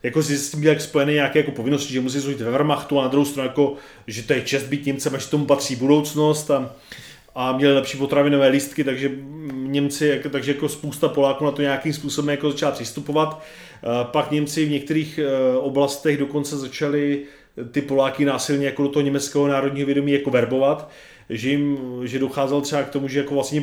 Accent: native